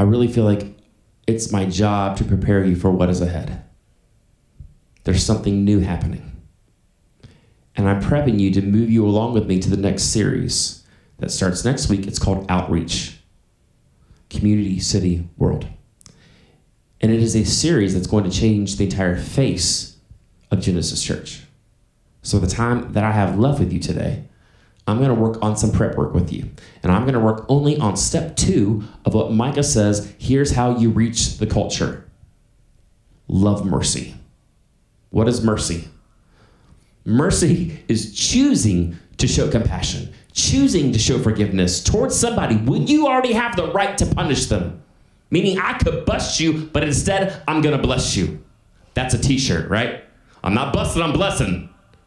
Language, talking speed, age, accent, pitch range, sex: English, 165 wpm, 30-49, American, 100-125 Hz, male